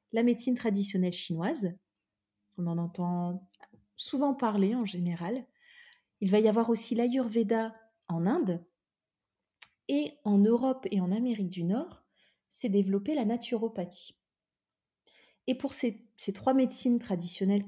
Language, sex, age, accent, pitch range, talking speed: French, female, 30-49, French, 185-240 Hz, 130 wpm